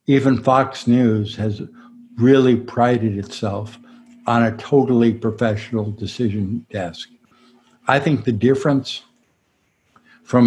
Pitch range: 110-130 Hz